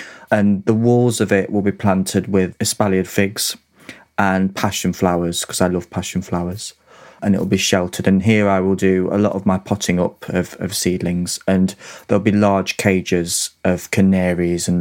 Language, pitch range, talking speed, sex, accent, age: English, 90-105 Hz, 180 wpm, male, British, 30-49